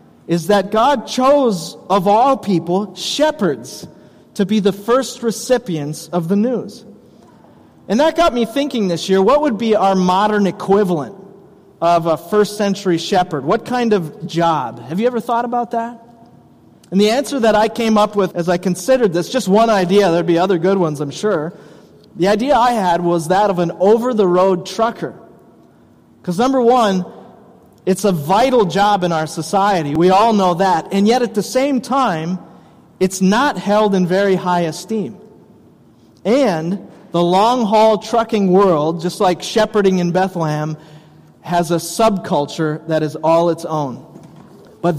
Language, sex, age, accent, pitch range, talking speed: English, male, 30-49, American, 175-220 Hz, 165 wpm